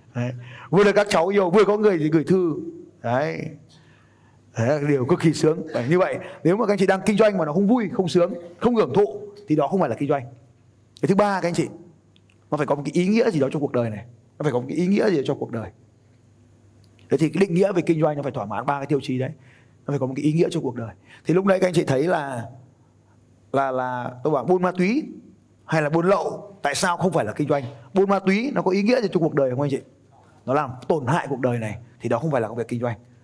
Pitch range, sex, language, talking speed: 125-200 Hz, male, Vietnamese, 280 wpm